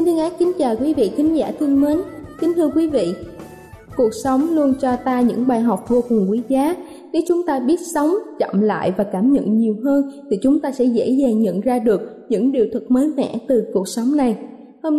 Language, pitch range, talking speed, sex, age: Vietnamese, 230-295 Hz, 230 wpm, female, 20-39